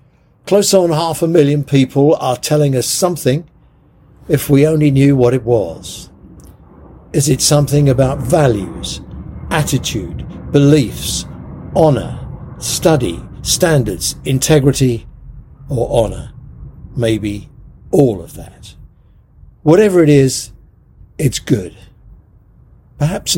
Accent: British